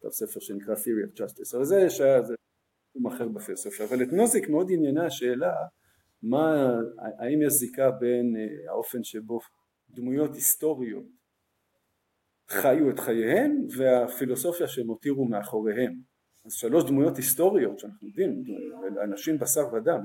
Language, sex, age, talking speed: Hebrew, male, 50-69, 125 wpm